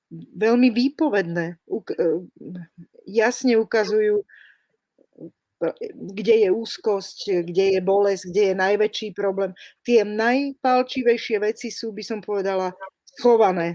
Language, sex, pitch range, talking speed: Slovak, female, 190-225 Hz, 100 wpm